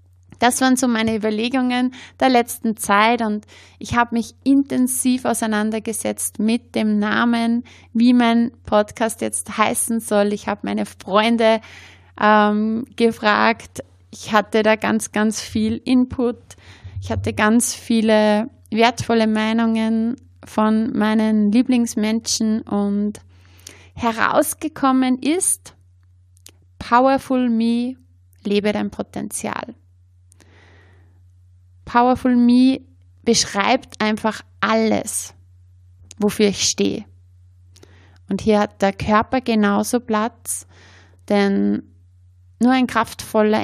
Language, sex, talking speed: German, female, 100 wpm